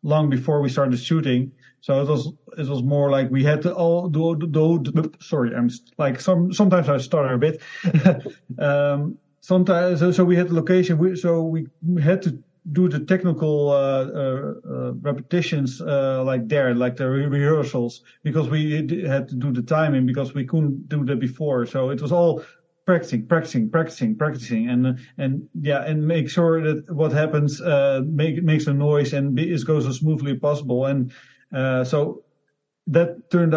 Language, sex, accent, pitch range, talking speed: English, male, Dutch, 135-165 Hz, 180 wpm